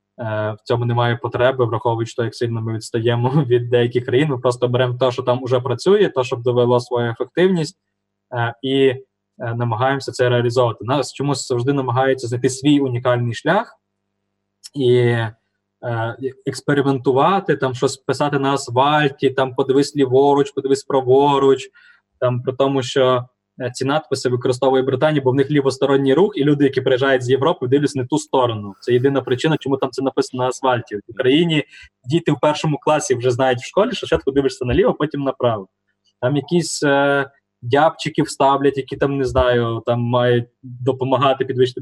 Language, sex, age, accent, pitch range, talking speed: Ukrainian, male, 20-39, native, 120-140 Hz, 160 wpm